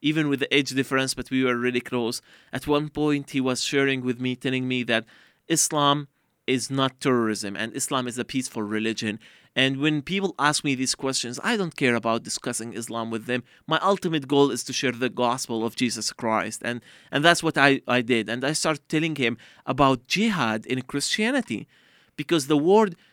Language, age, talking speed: English, 30-49, 195 wpm